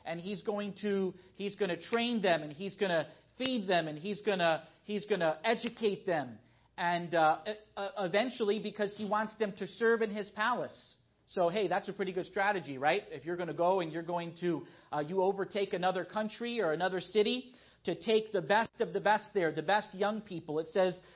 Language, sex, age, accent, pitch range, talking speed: English, male, 40-59, American, 175-215 Hz, 215 wpm